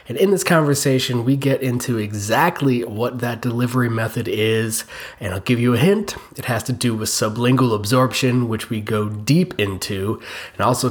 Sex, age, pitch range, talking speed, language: male, 20-39, 115-145 Hz, 180 wpm, English